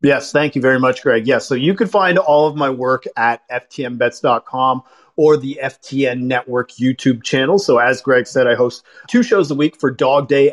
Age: 40-59